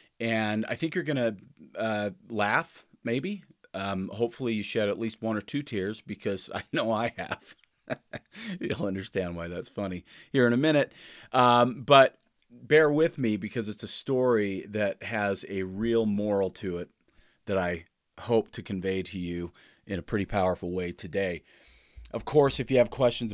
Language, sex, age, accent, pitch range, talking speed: English, male, 40-59, American, 95-120 Hz, 170 wpm